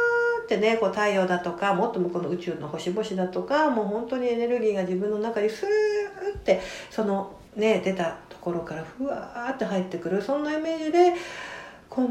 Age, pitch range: 60-79, 180-305 Hz